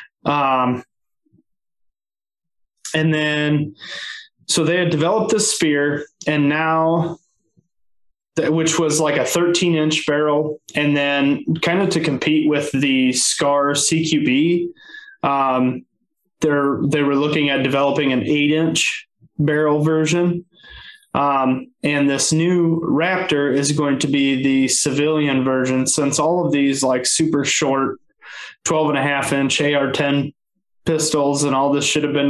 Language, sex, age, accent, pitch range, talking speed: English, male, 20-39, American, 140-165 Hz, 135 wpm